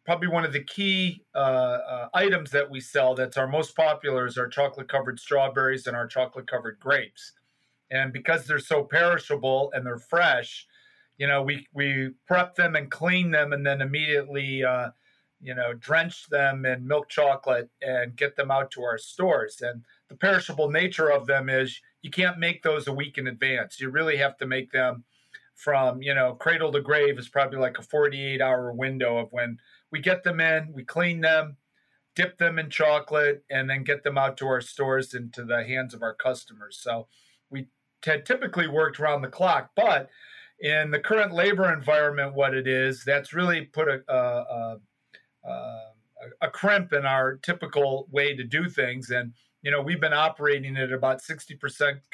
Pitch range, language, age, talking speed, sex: 130-155 Hz, English, 40-59, 185 wpm, male